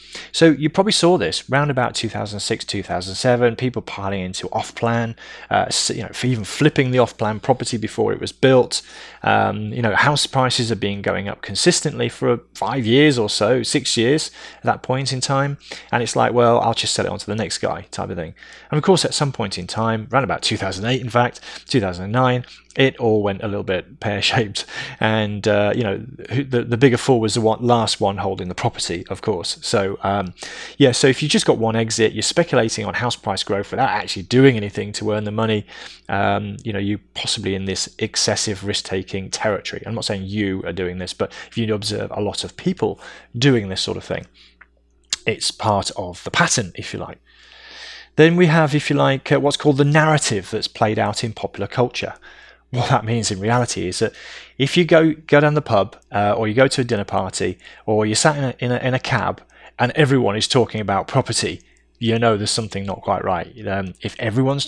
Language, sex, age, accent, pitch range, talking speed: English, male, 20-39, British, 105-135 Hz, 210 wpm